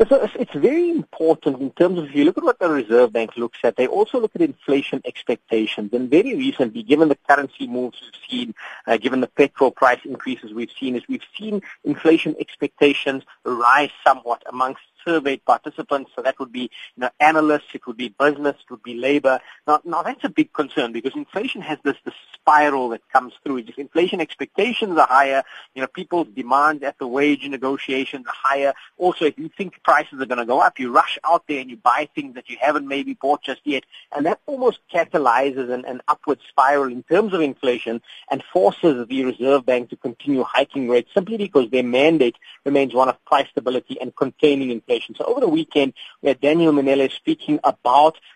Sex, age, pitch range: male, 30-49, 130-160 Hz